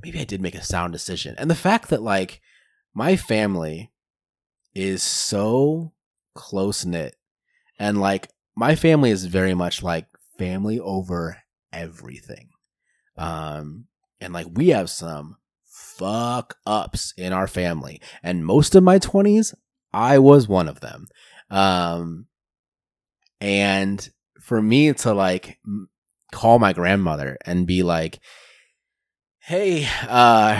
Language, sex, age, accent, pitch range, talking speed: English, male, 30-49, American, 95-135 Hz, 125 wpm